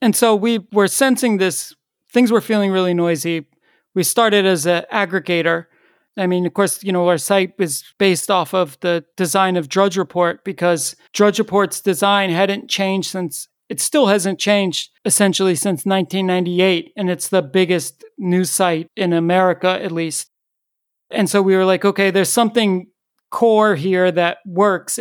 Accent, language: American, English